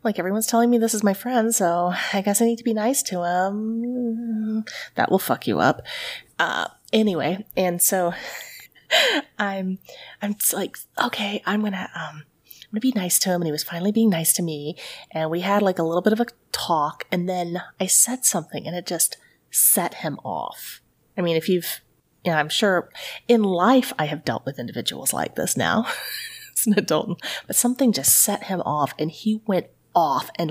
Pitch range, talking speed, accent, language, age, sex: 165-225 Hz, 205 wpm, American, English, 30-49, female